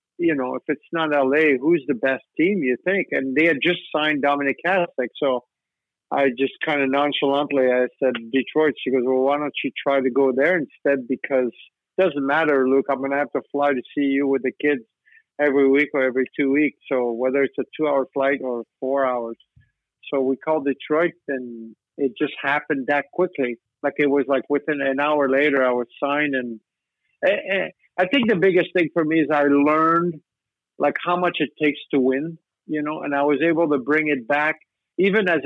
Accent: American